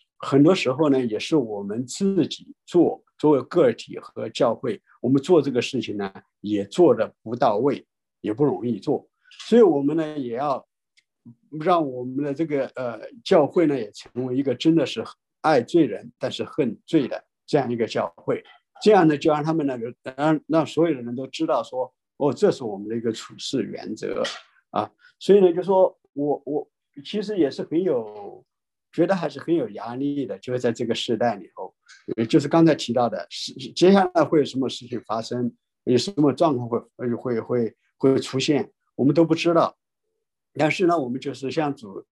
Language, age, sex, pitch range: English, 50-69, male, 125-185 Hz